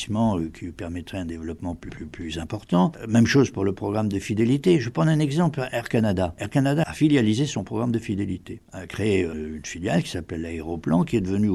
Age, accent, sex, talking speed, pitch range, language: 60-79, French, male, 205 wpm, 85-110 Hz, French